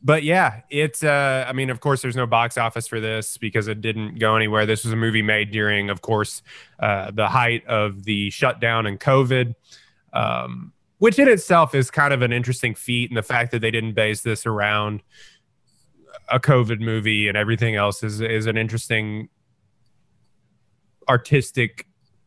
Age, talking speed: 20-39, 175 wpm